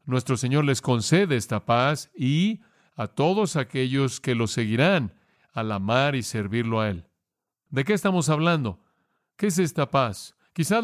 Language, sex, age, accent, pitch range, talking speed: English, male, 50-69, Mexican, 115-150 Hz, 155 wpm